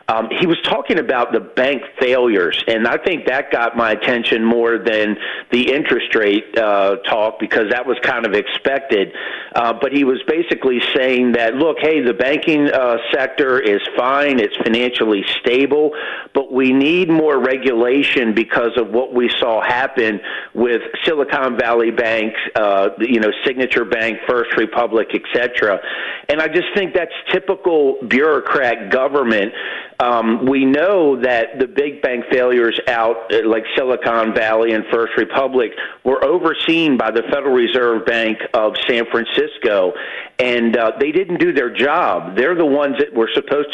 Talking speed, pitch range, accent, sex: 160 wpm, 115-170 Hz, American, male